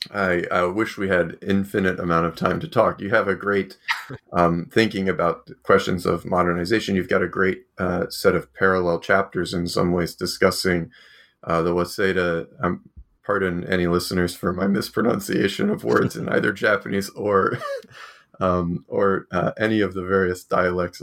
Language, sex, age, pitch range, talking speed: English, male, 30-49, 90-100 Hz, 165 wpm